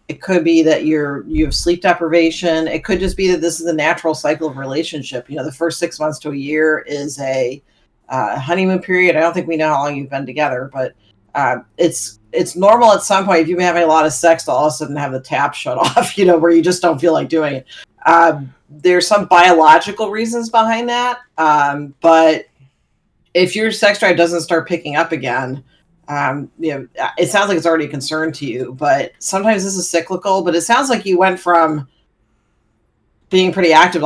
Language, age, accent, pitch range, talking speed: English, 40-59, American, 150-175 Hz, 220 wpm